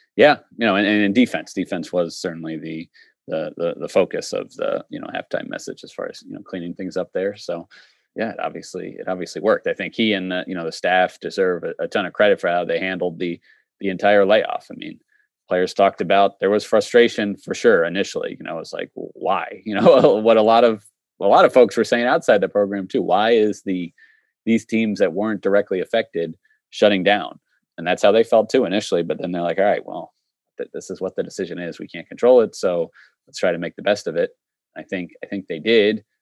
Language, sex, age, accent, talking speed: English, male, 30-49, American, 235 wpm